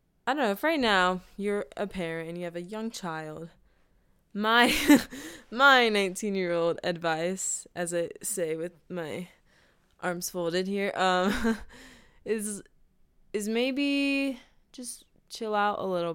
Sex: female